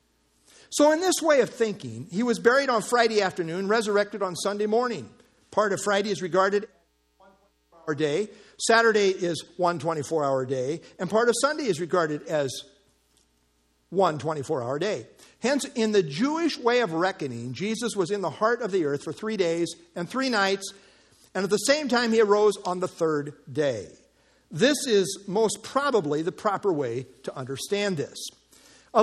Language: English